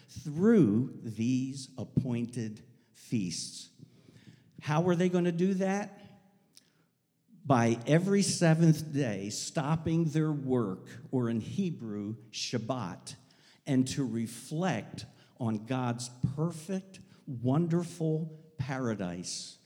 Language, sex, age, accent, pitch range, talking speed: English, male, 50-69, American, 125-170 Hz, 90 wpm